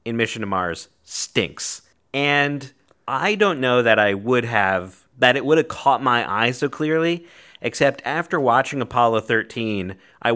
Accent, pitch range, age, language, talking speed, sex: American, 95-125 Hz, 30-49, English, 160 wpm, male